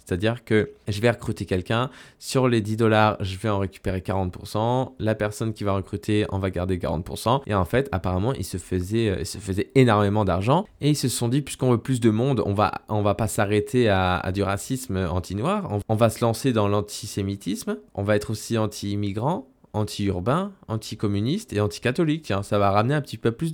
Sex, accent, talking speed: male, French, 200 wpm